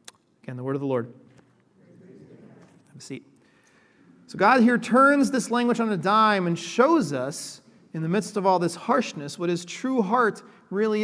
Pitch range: 155-220 Hz